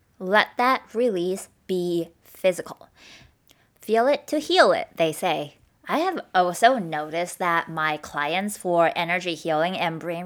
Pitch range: 165-225 Hz